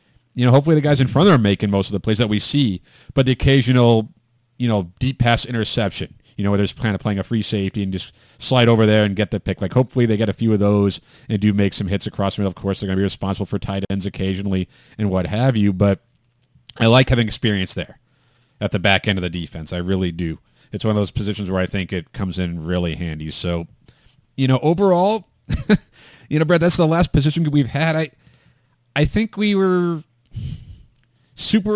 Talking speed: 230 wpm